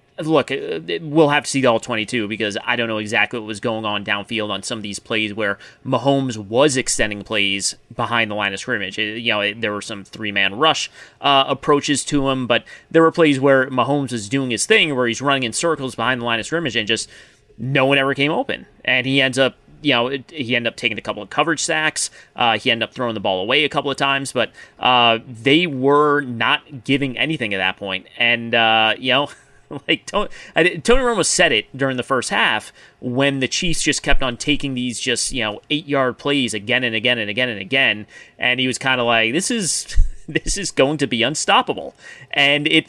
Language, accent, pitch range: English, American, 115-145 Hz